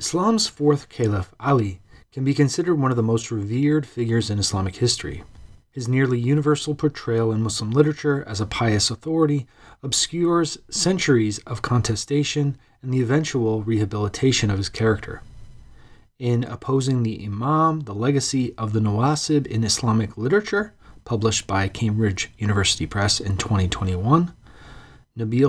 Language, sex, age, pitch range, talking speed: English, male, 30-49, 110-145 Hz, 135 wpm